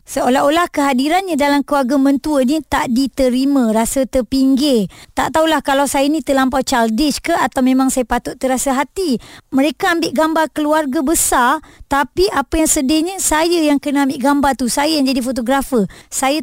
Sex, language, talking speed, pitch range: male, Malay, 160 wpm, 250-300 Hz